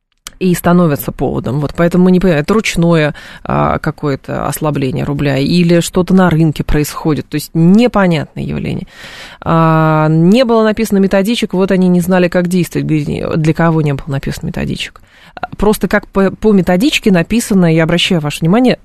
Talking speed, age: 155 wpm, 20-39